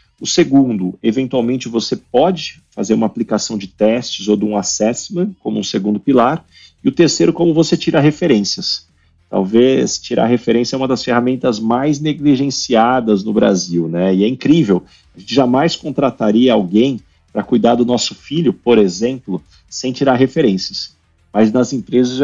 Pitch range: 105-140 Hz